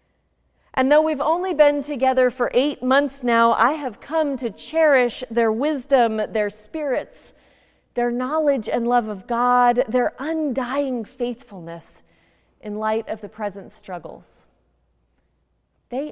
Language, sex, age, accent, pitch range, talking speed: English, female, 30-49, American, 185-250 Hz, 130 wpm